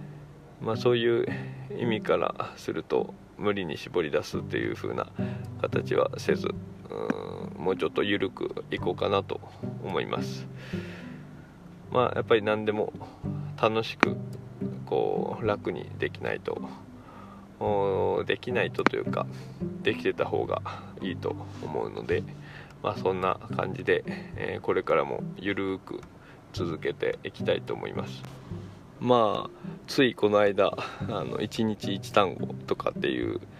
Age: 20-39